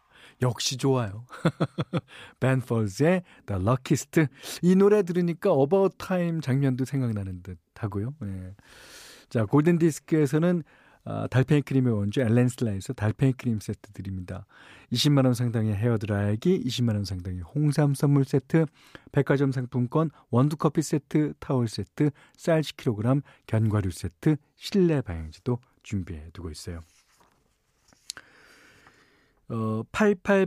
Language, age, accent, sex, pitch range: Korean, 40-59, native, male, 120-175 Hz